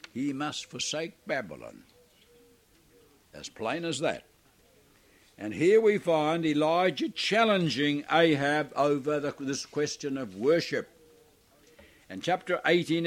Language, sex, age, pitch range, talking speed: English, male, 60-79, 125-165 Hz, 110 wpm